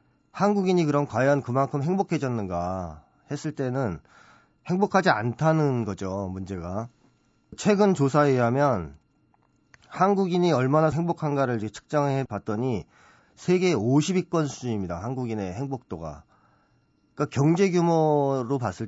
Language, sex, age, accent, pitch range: Korean, male, 40-59, native, 115-165 Hz